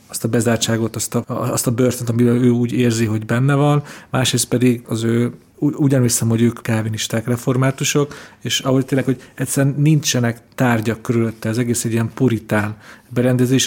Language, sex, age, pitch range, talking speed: Hungarian, male, 40-59, 115-135 Hz, 165 wpm